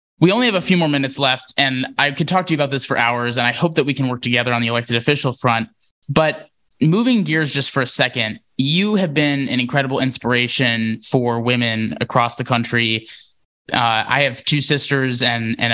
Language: English